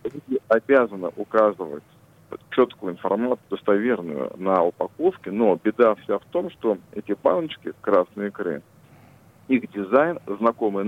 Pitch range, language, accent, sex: 105-130 Hz, Russian, native, male